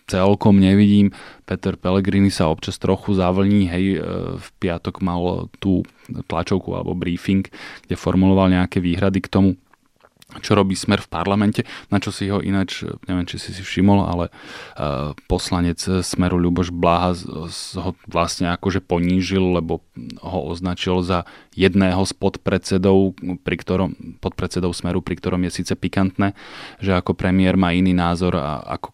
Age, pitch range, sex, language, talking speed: 20-39, 90-95 Hz, male, Slovak, 145 wpm